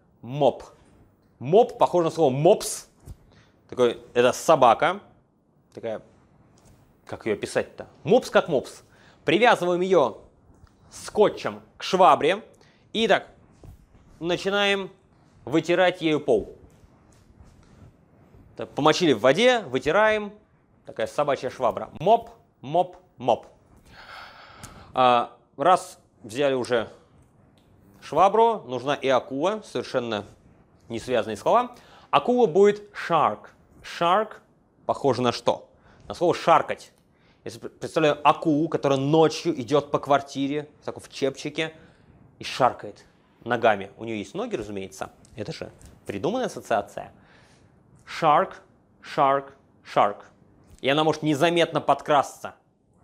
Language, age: Russian, 30-49